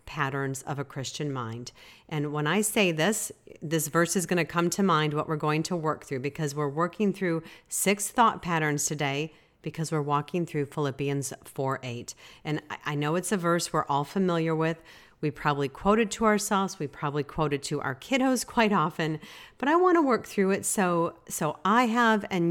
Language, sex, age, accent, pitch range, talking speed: English, female, 40-59, American, 145-195 Hz, 195 wpm